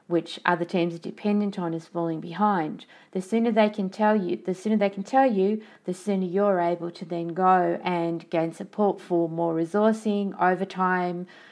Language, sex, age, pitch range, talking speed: English, female, 40-59, 175-205 Hz, 180 wpm